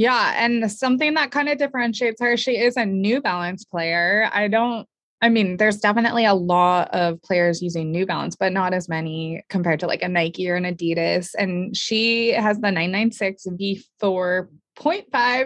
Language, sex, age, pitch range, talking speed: English, female, 20-39, 180-235 Hz, 170 wpm